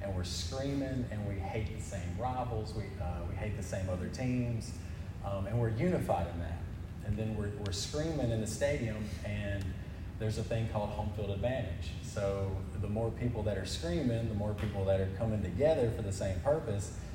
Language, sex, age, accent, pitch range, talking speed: English, male, 40-59, American, 90-110 Hz, 200 wpm